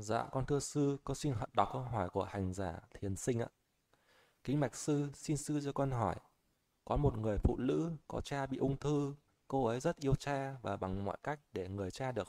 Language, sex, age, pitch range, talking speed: Vietnamese, male, 20-39, 110-145 Hz, 225 wpm